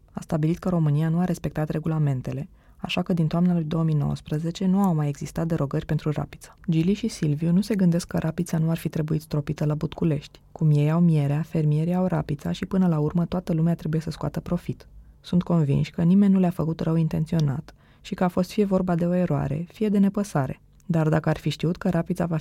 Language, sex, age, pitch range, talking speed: Romanian, female, 20-39, 155-180 Hz, 220 wpm